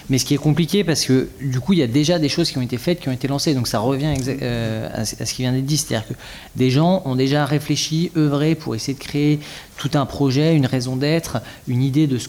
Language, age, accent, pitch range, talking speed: French, 30-49, French, 120-150 Hz, 275 wpm